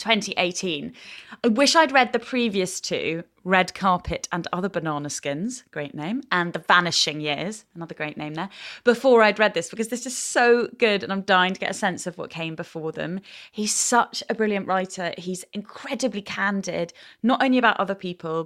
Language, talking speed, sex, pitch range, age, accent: English, 190 wpm, female, 170-225 Hz, 20-39, British